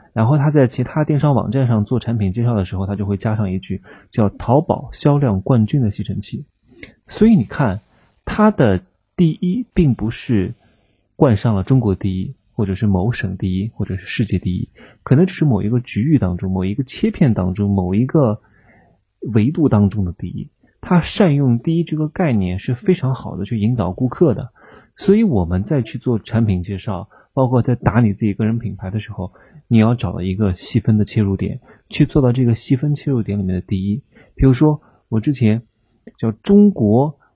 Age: 20-39